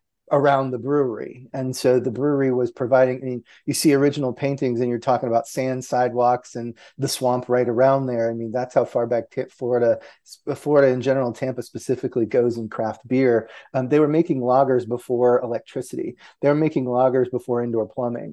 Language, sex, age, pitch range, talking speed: English, male, 30-49, 120-130 Hz, 185 wpm